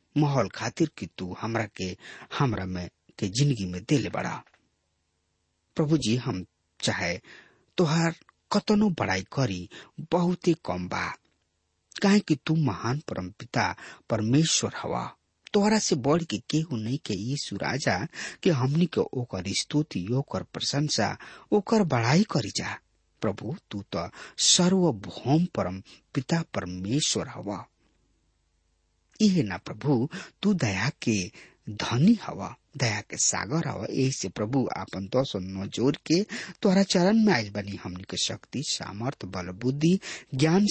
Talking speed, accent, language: 135 wpm, Indian, English